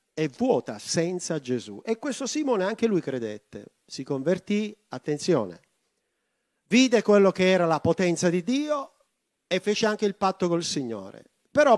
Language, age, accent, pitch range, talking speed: Italian, 50-69, native, 150-210 Hz, 150 wpm